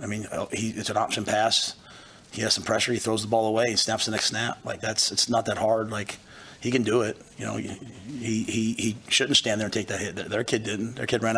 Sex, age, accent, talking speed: male, 30-49, American, 255 wpm